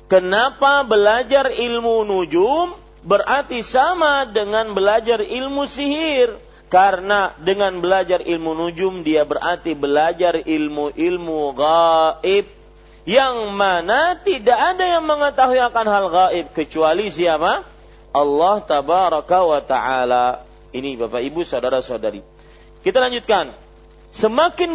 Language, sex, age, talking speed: Malay, male, 40-59, 105 wpm